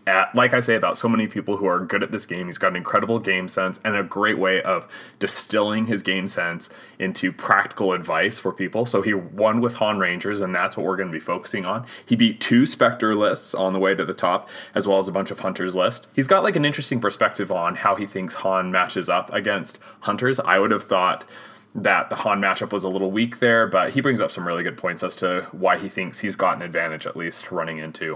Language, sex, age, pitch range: English, male, 20-39, 95-120 Hz